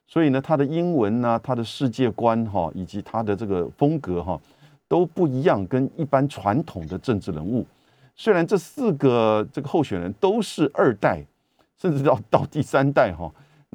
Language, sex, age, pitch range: Chinese, male, 50-69, 100-150 Hz